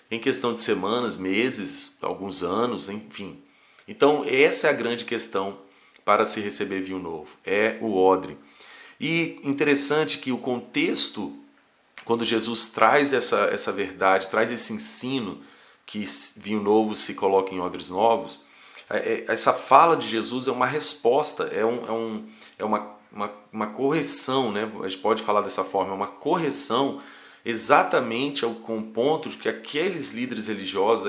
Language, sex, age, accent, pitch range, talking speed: Portuguese, male, 30-49, Brazilian, 105-140 Hz, 145 wpm